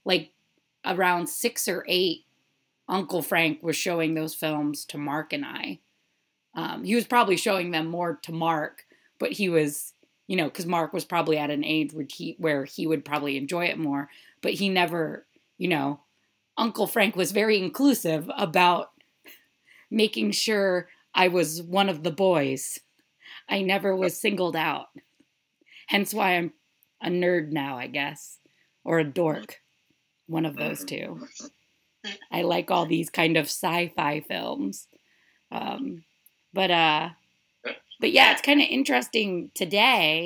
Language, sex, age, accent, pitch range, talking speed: English, female, 30-49, American, 160-200 Hz, 150 wpm